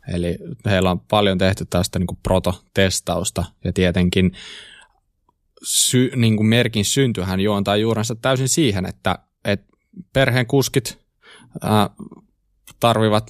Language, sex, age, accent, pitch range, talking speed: Finnish, male, 20-39, native, 95-120 Hz, 90 wpm